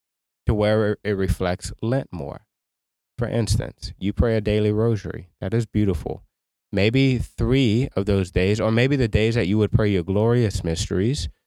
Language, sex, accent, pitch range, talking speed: English, male, American, 95-115 Hz, 165 wpm